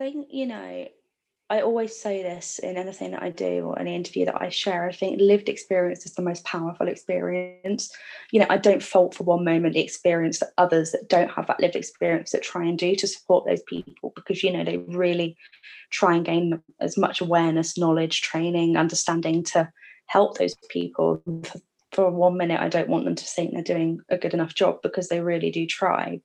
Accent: British